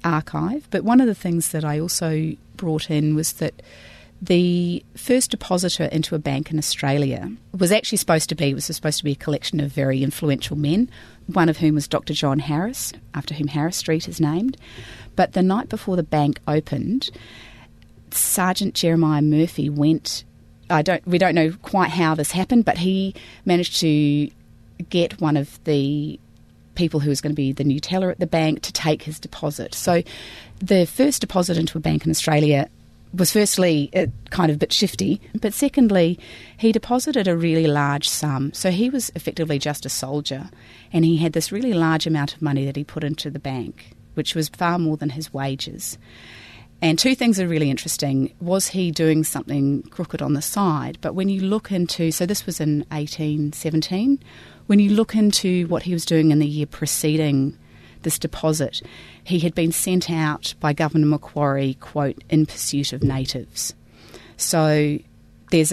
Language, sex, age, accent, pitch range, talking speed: English, female, 30-49, Australian, 145-180 Hz, 185 wpm